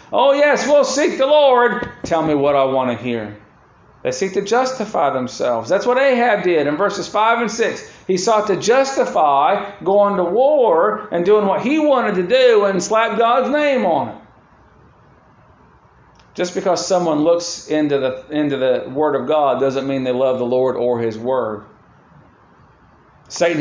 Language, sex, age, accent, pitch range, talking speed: English, male, 40-59, American, 140-225 Hz, 175 wpm